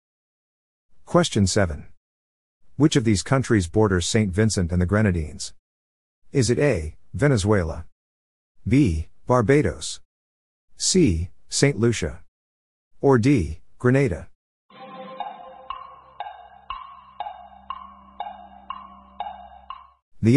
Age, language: 50-69, English